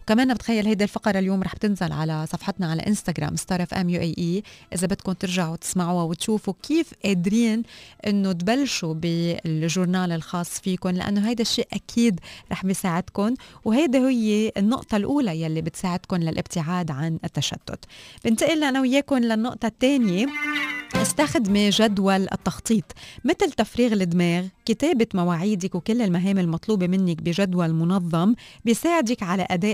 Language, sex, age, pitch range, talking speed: Arabic, female, 20-39, 170-225 Hz, 130 wpm